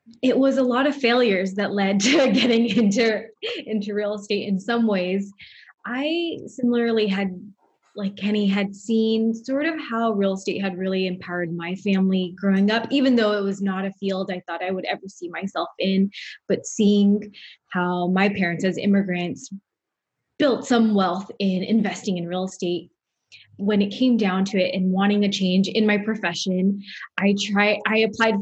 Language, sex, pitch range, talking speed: English, female, 190-230 Hz, 175 wpm